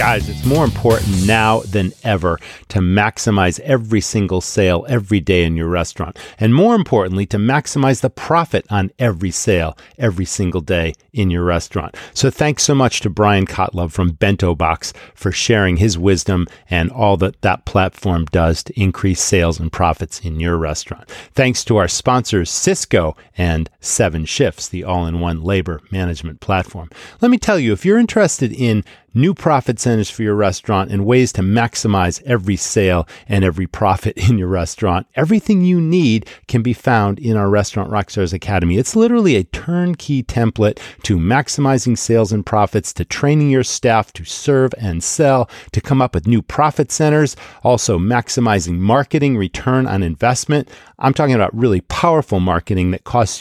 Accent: American